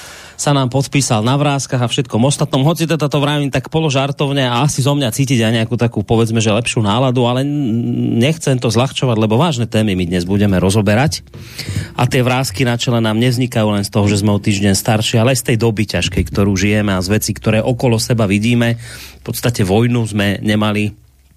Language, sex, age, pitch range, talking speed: Slovak, male, 30-49, 105-130 Hz, 200 wpm